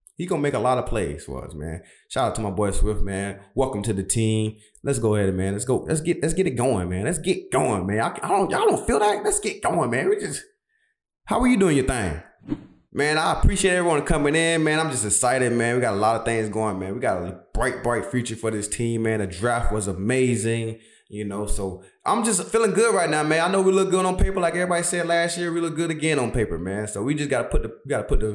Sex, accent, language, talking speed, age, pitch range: male, American, English, 275 wpm, 20-39, 105-145 Hz